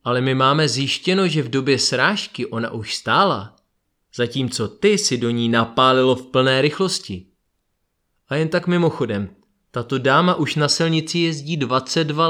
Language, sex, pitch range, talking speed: Czech, male, 120-165 Hz, 150 wpm